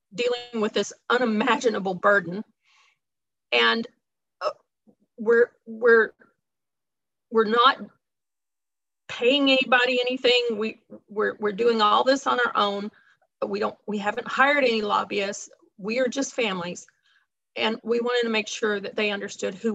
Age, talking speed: 40-59, 130 wpm